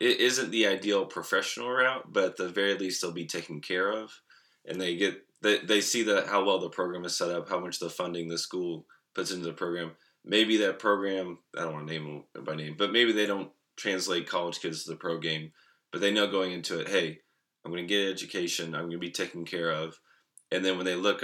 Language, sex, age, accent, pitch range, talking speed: English, male, 20-39, American, 85-100 Hz, 245 wpm